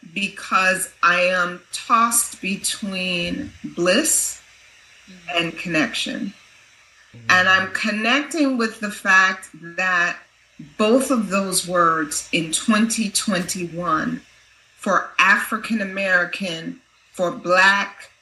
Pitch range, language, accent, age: 175-215 Hz, English, American, 40-59